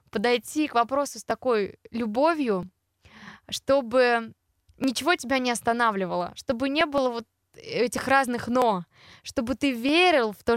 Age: 20-39